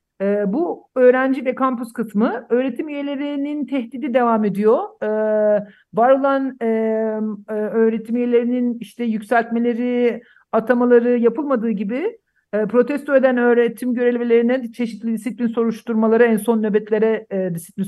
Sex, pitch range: male, 185-235 Hz